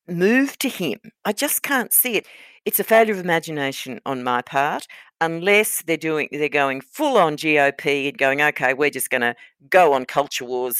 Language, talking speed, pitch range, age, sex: English, 195 wpm, 145-195 Hz, 50-69, female